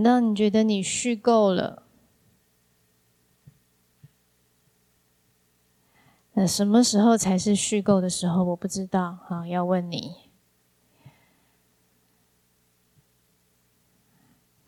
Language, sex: Chinese, female